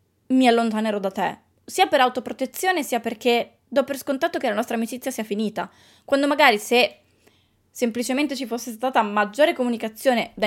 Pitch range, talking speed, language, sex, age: 215-265 Hz, 160 wpm, Italian, female, 20-39